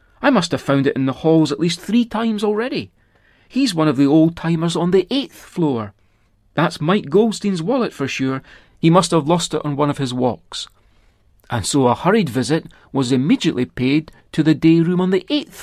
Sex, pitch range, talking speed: male, 125-175 Hz, 205 wpm